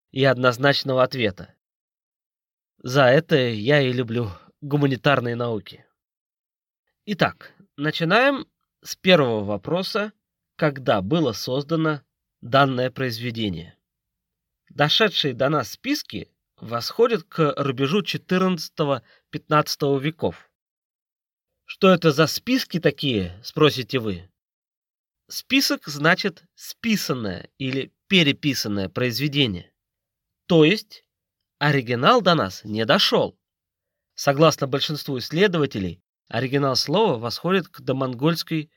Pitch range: 130-180 Hz